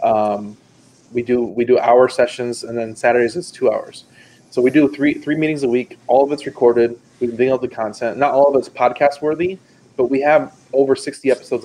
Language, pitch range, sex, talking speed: English, 115-130 Hz, male, 215 wpm